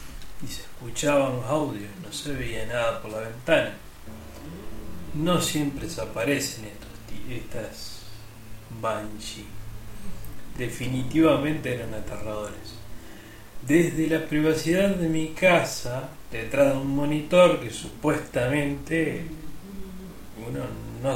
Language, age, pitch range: Spanish, 30-49, 110-145 Hz